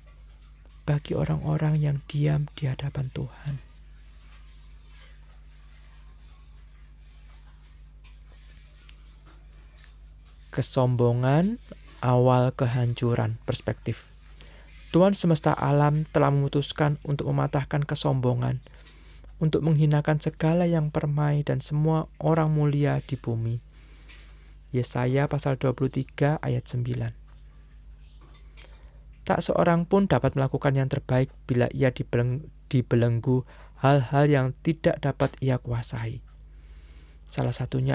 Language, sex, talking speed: Indonesian, male, 85 wpm